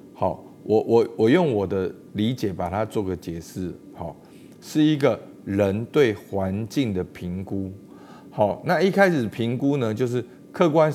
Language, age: Chinese, 50-69